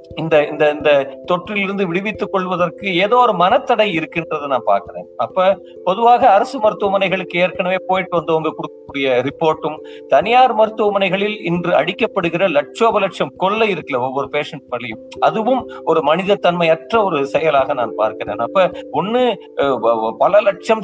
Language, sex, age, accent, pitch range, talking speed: Tamil, male, 50-69, native, 150-200 Hz, 120 wpm